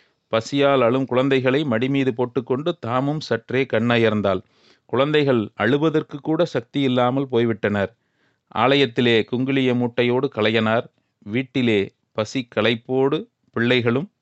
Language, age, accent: Tamil, 40-59, native